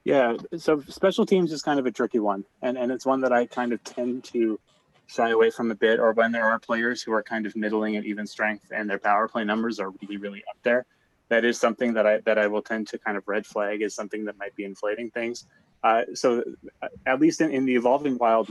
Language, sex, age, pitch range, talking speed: English, male, 20-39, 105-120 Hz, 255 wpm